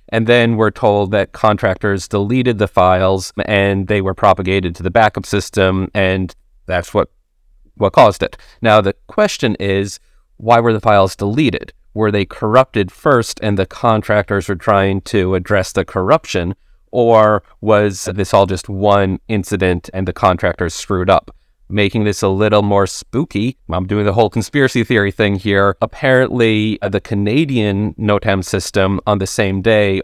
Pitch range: 95-110 Hz